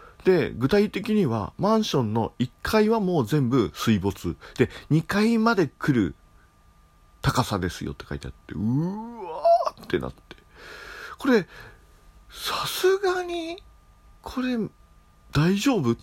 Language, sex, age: Japanese, male, 40-59